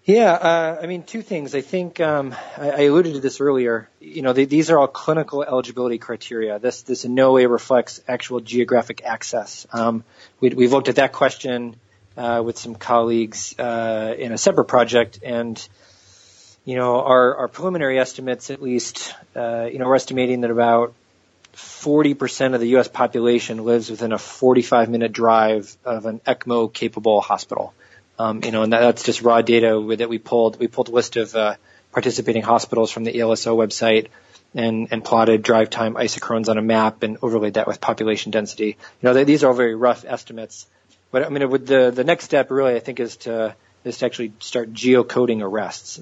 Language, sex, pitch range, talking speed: English, male, 115-125 Hz, 190 wpm